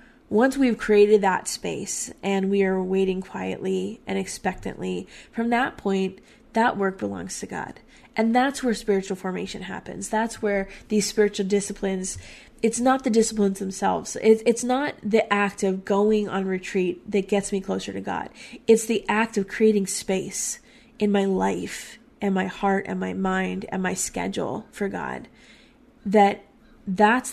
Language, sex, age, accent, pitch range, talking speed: English, female, 20-39, American, 195-225 Hz, 160 wpm